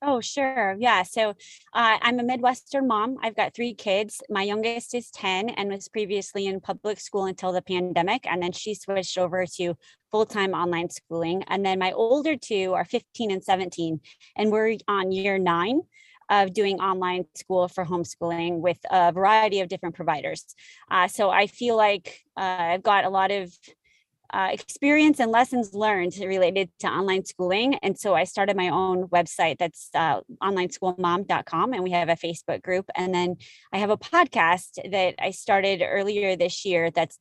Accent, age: American, 20-39